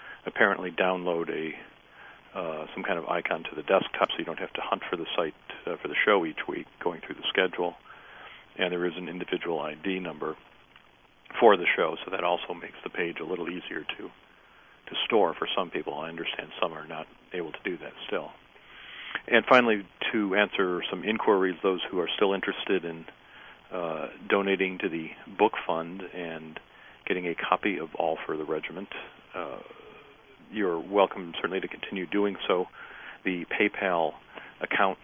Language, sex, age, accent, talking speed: English, male, 50-69, American, 175 wpm